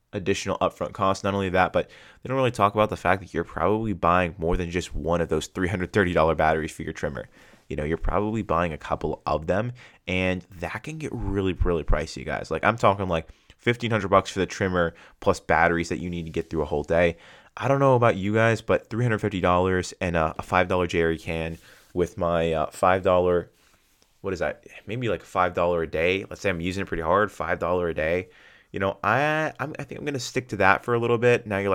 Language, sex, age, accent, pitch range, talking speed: English, male, 20-39, American, 85-105 Hz, 225 wpm